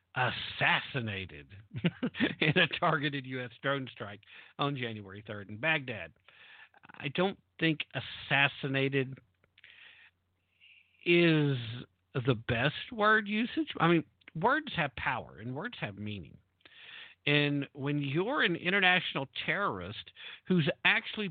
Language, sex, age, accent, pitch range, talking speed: English, male, 50-69, American, 115-160 Hz, 105 wpm